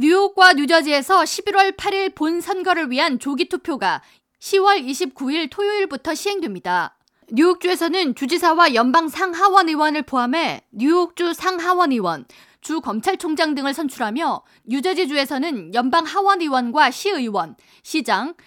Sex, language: female, Korean